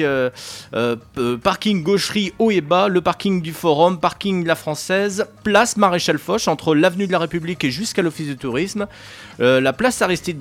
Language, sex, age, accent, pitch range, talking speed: French, male, 40-59, French, 145-190 Hz, 185 wpm